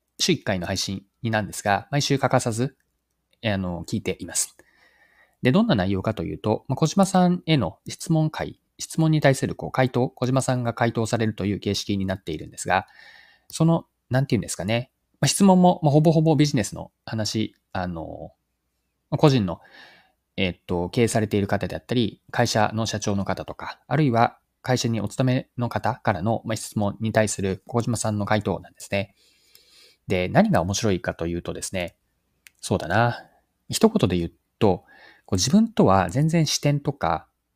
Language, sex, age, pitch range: Japanese, male, 20-39, 100-140 Hz